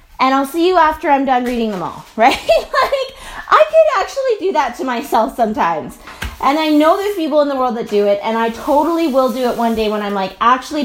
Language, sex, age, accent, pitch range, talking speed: English, female, 20-39, American, 240-320 Hz, 240 wpm